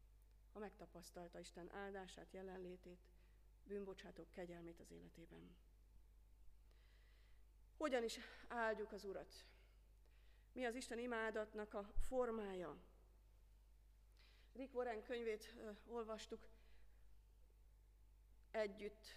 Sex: female